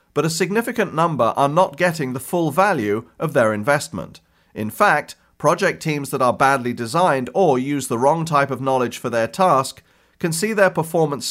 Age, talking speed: 40-59, 185 wpm